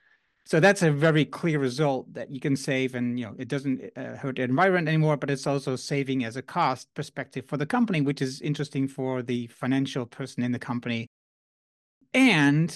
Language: Dutch